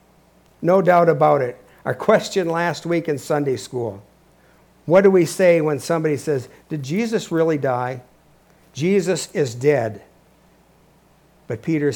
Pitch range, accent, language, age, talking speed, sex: 135-170 Hz, American, English, 60-79, 135 wpm, male